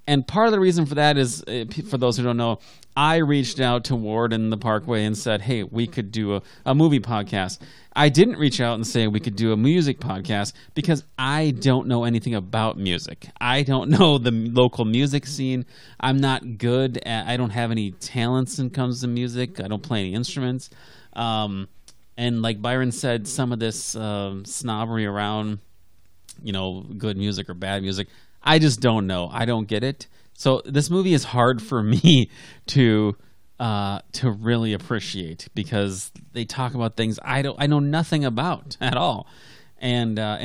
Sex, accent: male, American